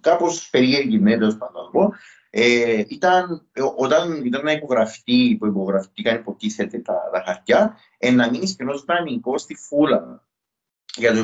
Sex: male